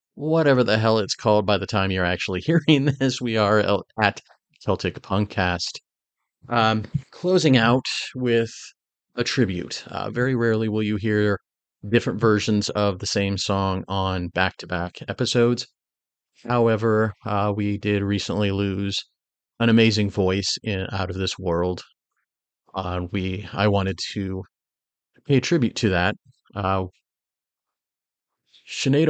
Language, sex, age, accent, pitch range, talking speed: English, male, 30-49, American, 95-110 Hz, 130 wpm